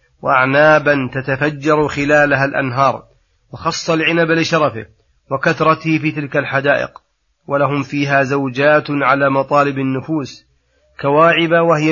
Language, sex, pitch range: Arabic, male, 135-150 Hz